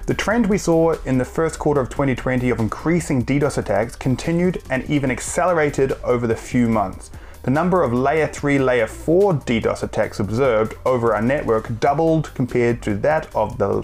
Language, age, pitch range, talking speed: English, 20-39, 110-150 Hz, 180 wpm